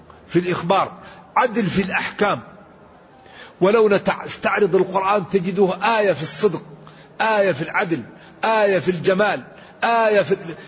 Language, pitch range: Arabic, 170-210 Hz